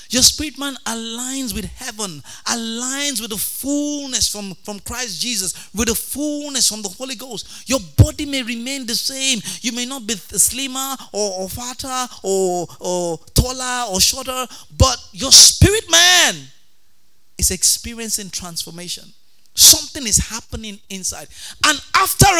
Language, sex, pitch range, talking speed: English, male, 185-275 Hz, 140 wpm